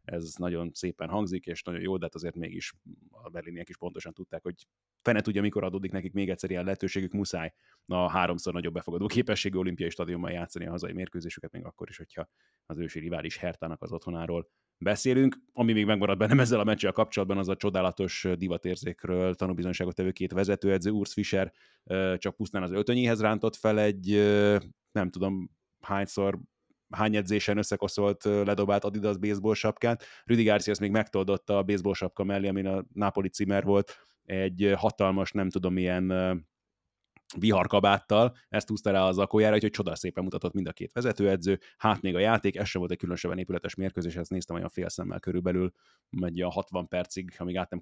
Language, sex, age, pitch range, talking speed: Hungarian, male, 30-49, 90-105 Hz, 175 wpm